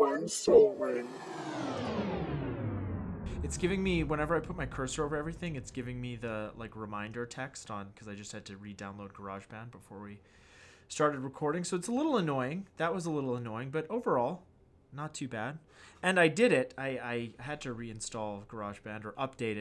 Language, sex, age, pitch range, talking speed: English, male, 20-39, 105-140 Hz, 170 wpm